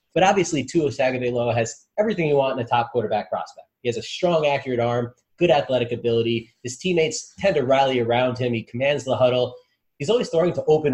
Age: 30-49